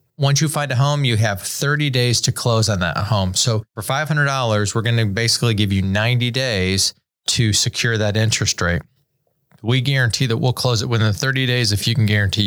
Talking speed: 205 wpm